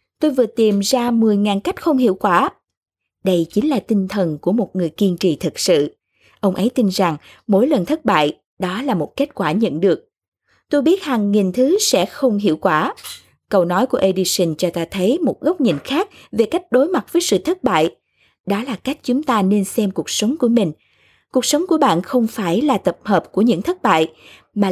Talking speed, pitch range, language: 215 wpm, 185-260 Hz, Vietnamese